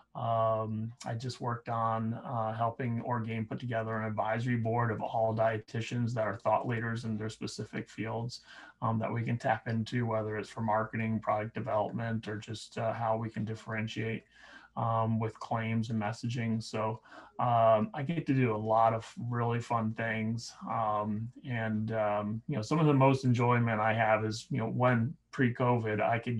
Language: English